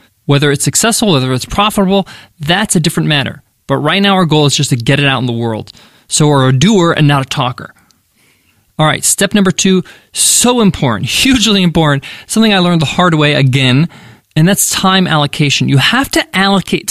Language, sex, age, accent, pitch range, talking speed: English, male, 20-39, American, 145-205 Hz, 200 wpm